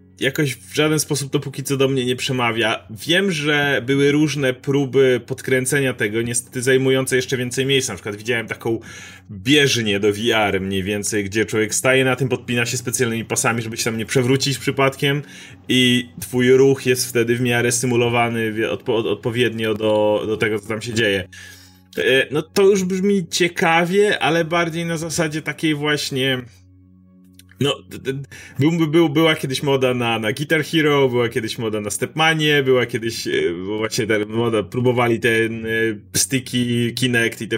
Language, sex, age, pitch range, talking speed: Polish, male, 30-49, 110-150 Hz, 170 wpm